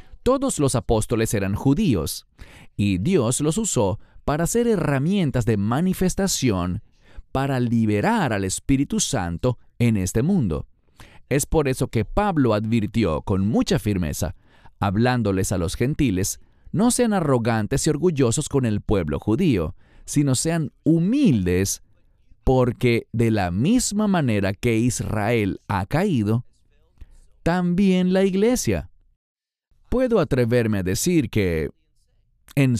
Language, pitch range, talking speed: English, 100-155 Hz, 120 wpm